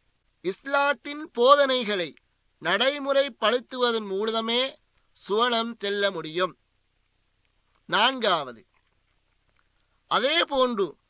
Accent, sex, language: native, male, Tamil